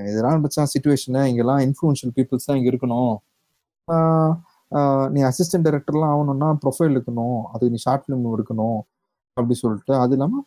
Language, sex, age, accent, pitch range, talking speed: Tamil, male, 30-49, native, 125-165 Hz, 140 wpm